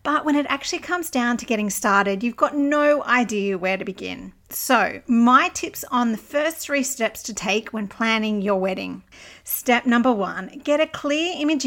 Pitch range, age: 205-275 Hz, 40-59